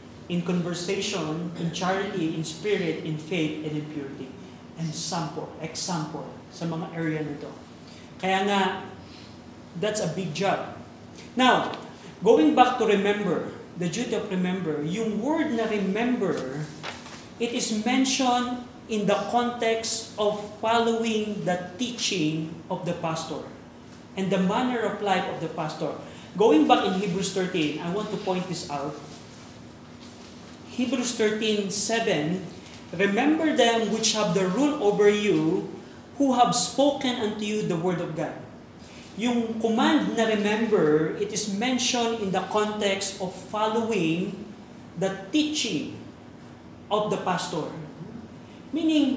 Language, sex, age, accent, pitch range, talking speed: Filipino, male, 40-59, native, 180-230 Hz, 130 wpm